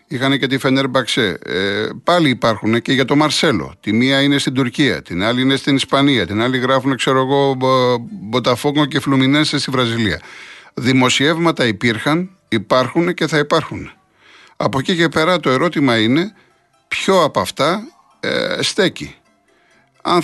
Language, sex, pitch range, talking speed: Greek, male, 120-170 Hz, 145 wpm